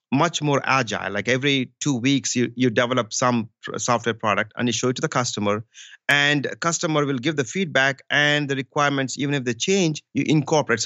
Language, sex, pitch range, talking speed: English, male, 125-165 Hz, 200 wpm